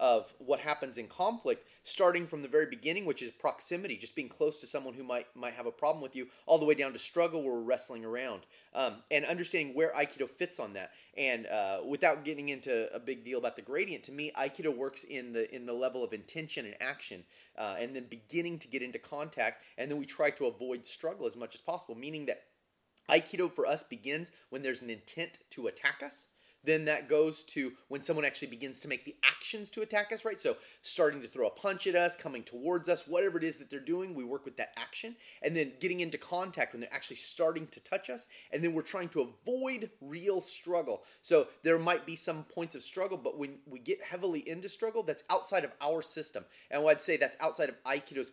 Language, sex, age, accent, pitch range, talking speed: English, male, 30-49, American, 140-190 Hz, 230 wpm